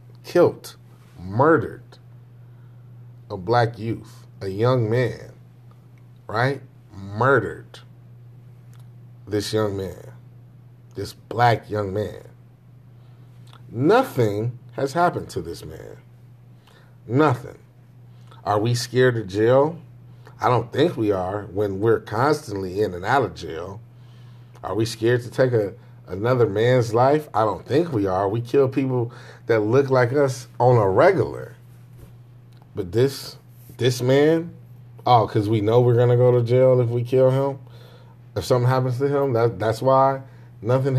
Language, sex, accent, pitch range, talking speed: English, male, American, 120-130 Hz, 135 wpm